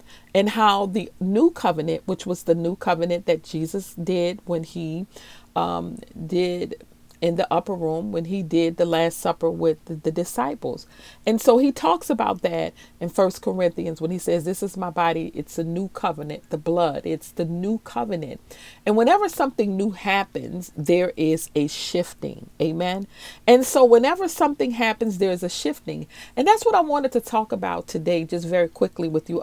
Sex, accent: female, American